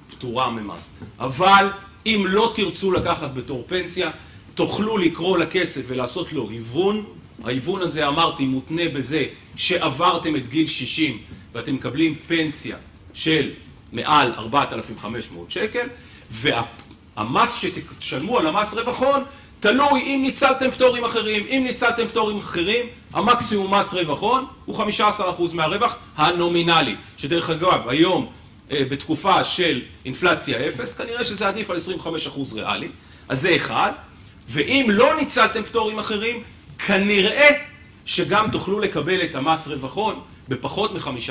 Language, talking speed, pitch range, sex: Hebrew, 125 wpm, 135-215 Hz, male